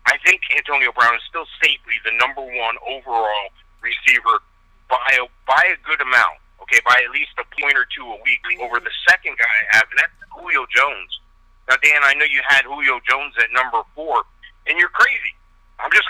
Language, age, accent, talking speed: English, 50-69, American, 200 wpm